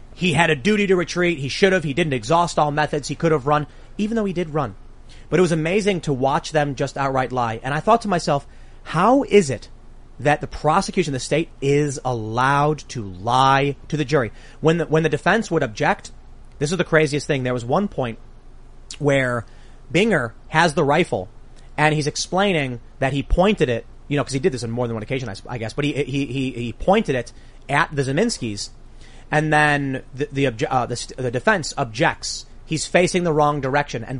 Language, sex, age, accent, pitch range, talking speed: English, male, 30-49, American, 130-170 Hz, 210 wpm